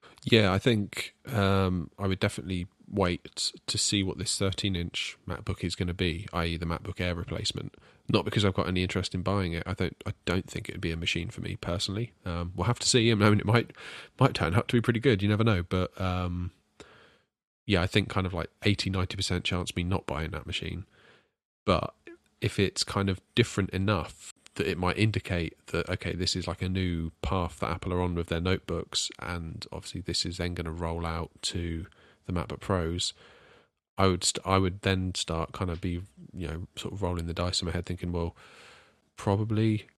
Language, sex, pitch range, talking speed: English, male, 85-100 Hz, 215 wpm